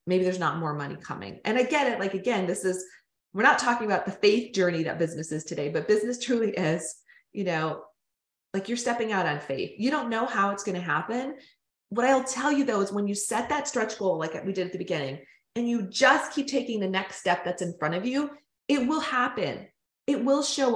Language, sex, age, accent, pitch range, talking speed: English, female, 30-49, American, 175-245 Hz, 235 wpm